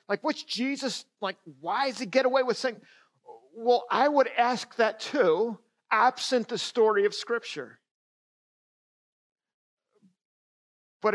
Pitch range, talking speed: 195-235 Hz, 125 wpm